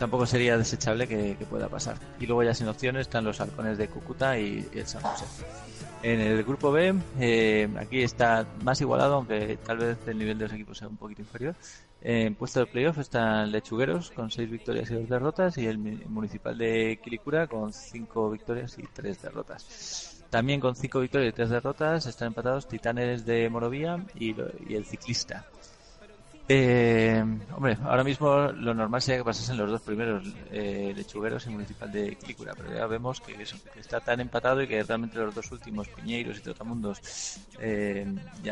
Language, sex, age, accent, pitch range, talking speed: Spanish, male, 30-49, Spanish, 110-125 Hz, 190 wpm